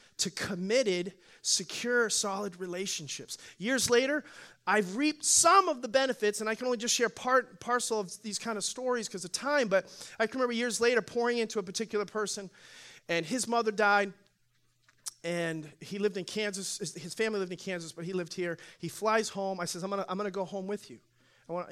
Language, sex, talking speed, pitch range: English, male, 200 wpm, 170-210 Hz